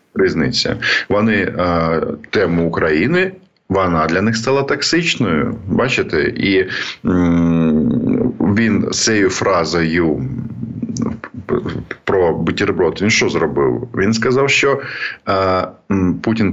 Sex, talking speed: male, 85 wpm